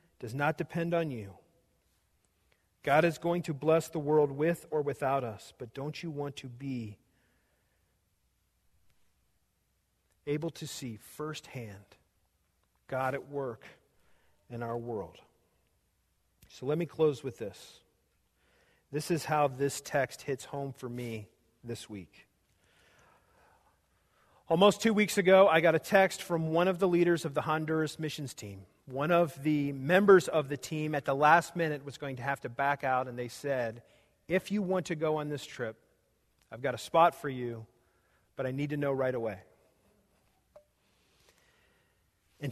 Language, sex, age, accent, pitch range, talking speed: English, male, 40-59, American, 120-170 Hz, 155 wpm